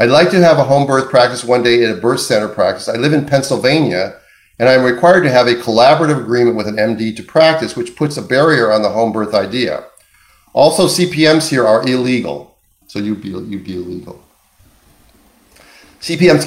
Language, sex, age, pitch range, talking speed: English, male, 40-59, 105-135 Hz, 190 wpm